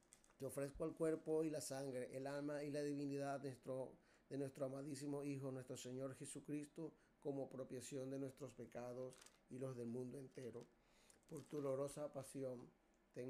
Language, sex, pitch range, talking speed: Spanish, male, 125-140 Hz, 160 wpm